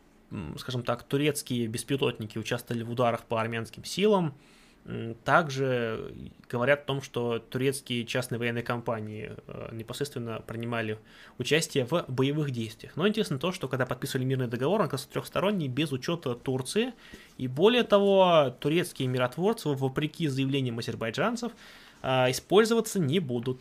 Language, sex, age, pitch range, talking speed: Russian, male, 20-39, 120-155 Hz, 125 wpm